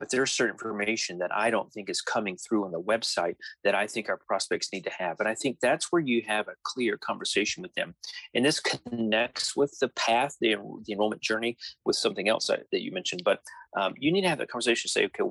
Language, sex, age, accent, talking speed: English, male, 30-49, American, 235 wpm